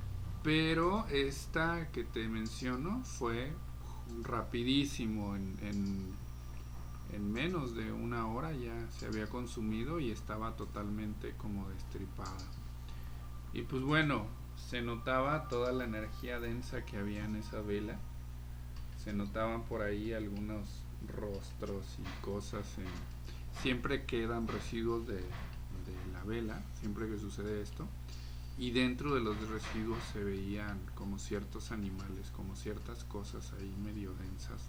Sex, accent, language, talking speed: male, Mexican, Spanish, 125 wpm